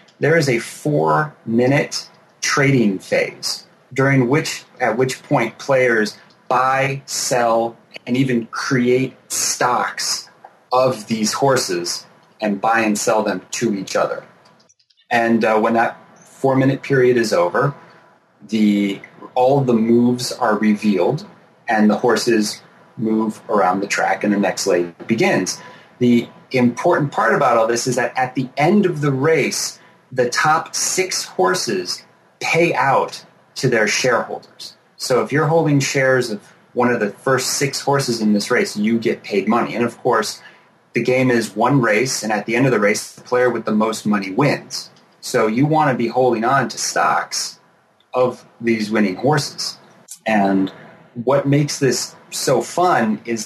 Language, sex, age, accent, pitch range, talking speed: English, male, 30-49, American, 110-140 Hz, 160 wpm